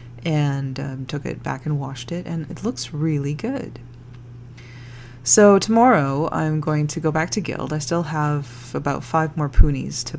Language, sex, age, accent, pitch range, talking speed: English, female, 30-49, American, 120-165 Hz, 175 wpm